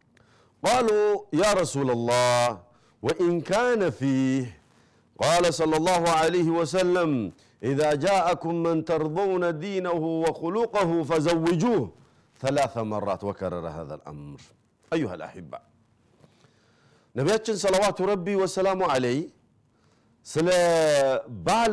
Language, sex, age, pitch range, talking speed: Amharic, male, 50-69, 130-180 Hz, 90 wpm